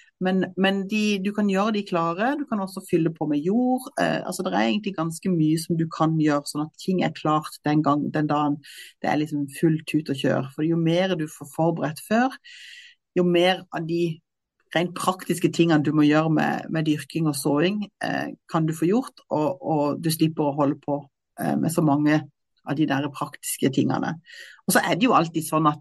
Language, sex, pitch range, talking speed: English, female, 150-185 Hz, 220 wpm